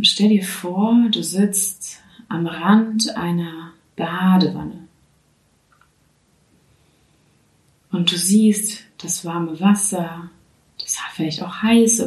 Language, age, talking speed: German, 30-49, 95 wpm